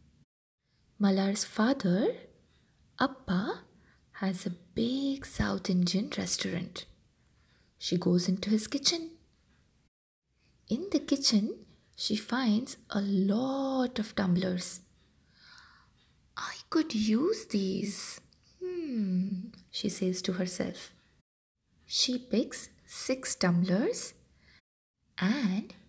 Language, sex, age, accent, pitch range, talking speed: English, female, 20-39, Indian, 190-260 Hz, 85 wpm